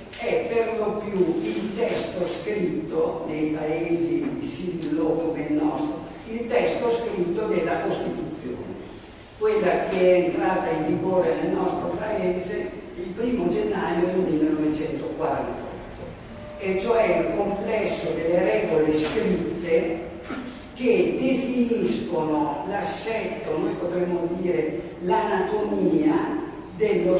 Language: Italian